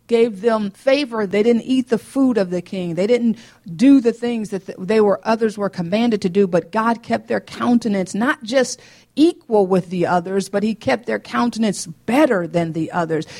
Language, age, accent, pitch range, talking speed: English, 50-69, American, 180-235 Hz, 195 wpm